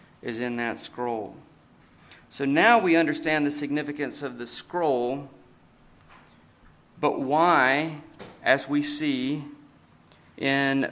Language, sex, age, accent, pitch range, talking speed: English, male, 40-59, American, 130-155 Hz, 105 wpm